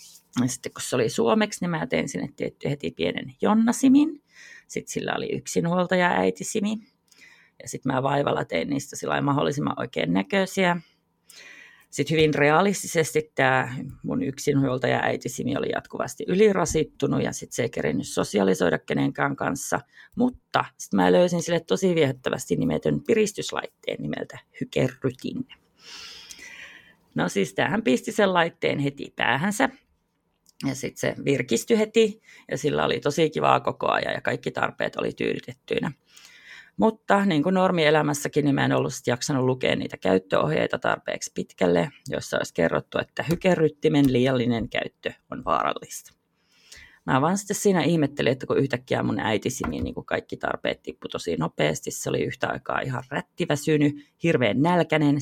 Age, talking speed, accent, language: 30-49, 140 wpm, native, Finnish